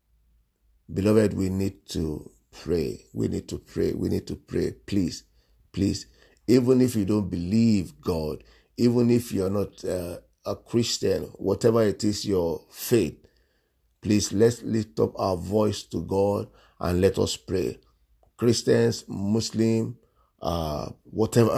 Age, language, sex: 50-69, English, male